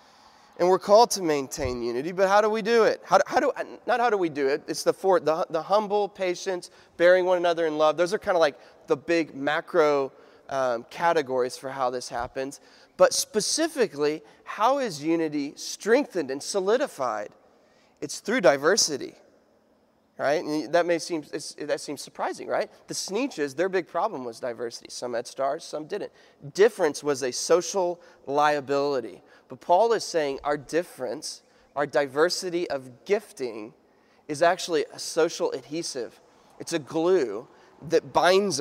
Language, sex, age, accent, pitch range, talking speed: English, male, 20-39, American, 150-205 Hz, 160 wpm